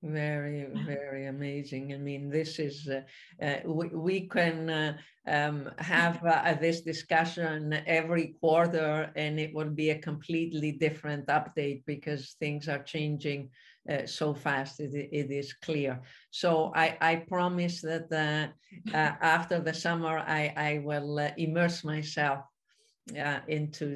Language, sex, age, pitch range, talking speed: English, female, 50-69, 145-170 Hz, 140 wpm